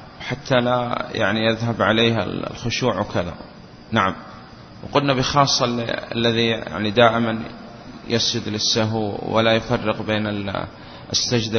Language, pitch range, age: Arabic, 110-130 Hz, 30-49